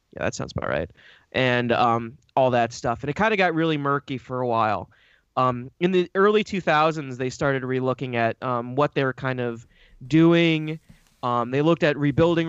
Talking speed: 195 wpm